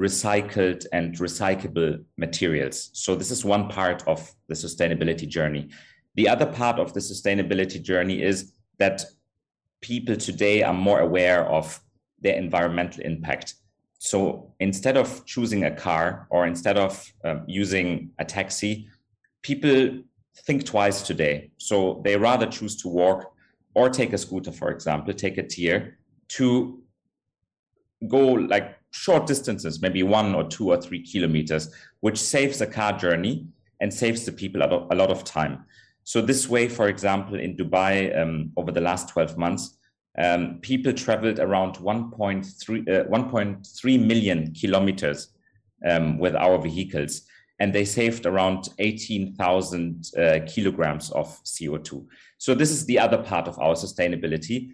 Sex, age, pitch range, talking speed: male, 30-49, 85-110 Hz, 140 wpm